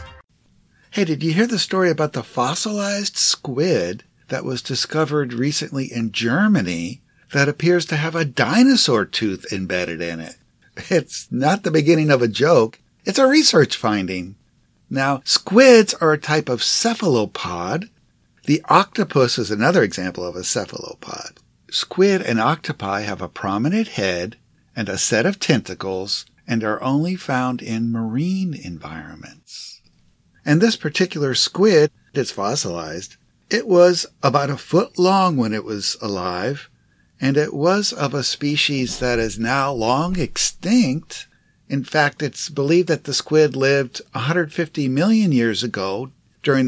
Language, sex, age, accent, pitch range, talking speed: English, male, 60-79, American, 115-175 Hz, 145 wpm